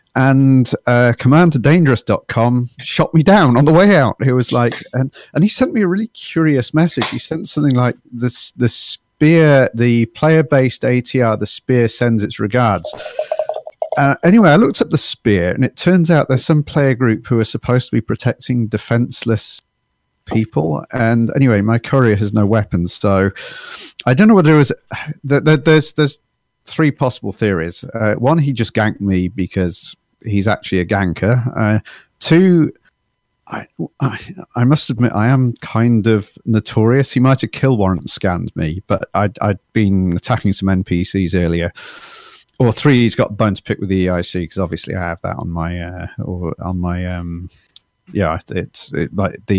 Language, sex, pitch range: English, male, 105-145 Hz